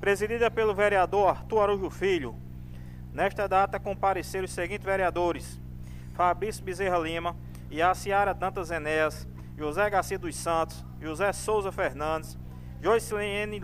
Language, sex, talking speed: Portuguese, male, 115 wpm